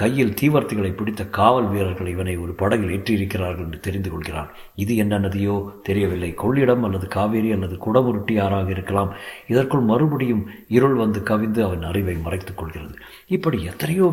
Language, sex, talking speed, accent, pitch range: Tamil, male, 130 wpm, native, 100-130 Hz